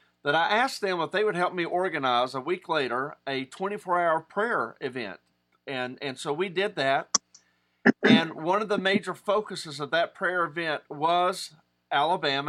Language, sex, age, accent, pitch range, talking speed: English, male, 40-59, American, 135-180 Hz, 170 wpm